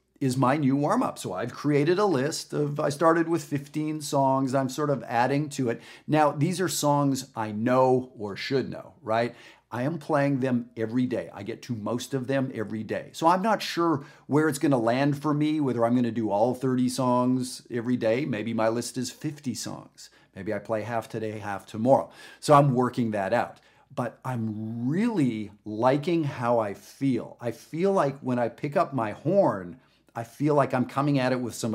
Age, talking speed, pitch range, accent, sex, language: 40-59, 205 wpm, 115-150 Hz, American, male, English